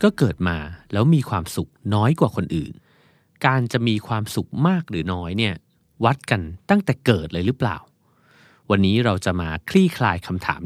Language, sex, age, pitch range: Thai, male, 30-49, 95-140 Hz